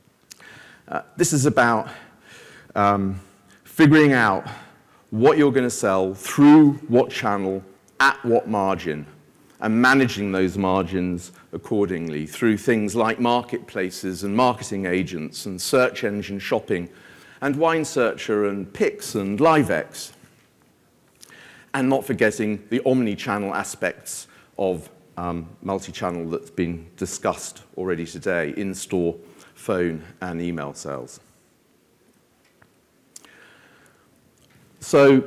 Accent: British